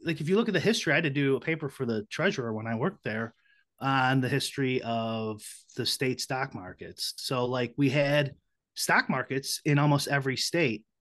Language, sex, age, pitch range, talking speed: English, male, 30-49, 130-165 Hz, 205 wpm